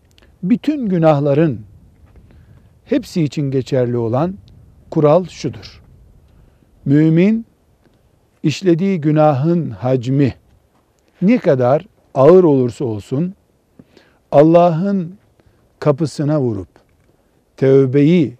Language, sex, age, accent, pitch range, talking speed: Turkish, male, 60-79, native, 125-175 Hz, 70 wpm